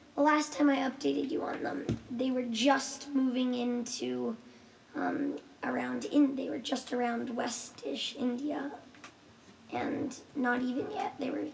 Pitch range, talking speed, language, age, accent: 245-285 Hz, 145 wpm, English, 20-39, American